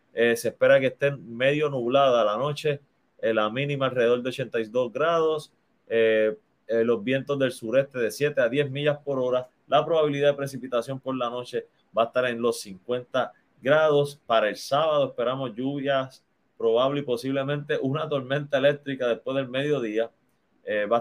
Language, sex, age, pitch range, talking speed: Spanish, male, 30-49, 120-145 Hz, 170 wpm